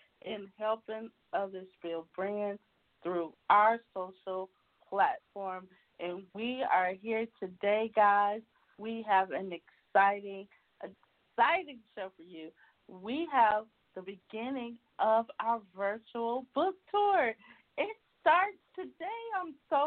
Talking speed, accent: 110 wpm, American